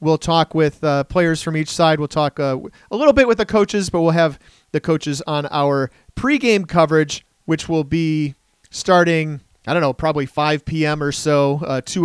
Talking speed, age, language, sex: 200 wpm, 40-59, English, male